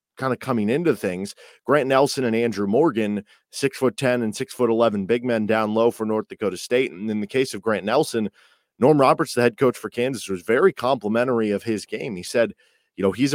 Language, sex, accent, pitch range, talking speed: English, male, American, 105-125 Hz, 225 wpm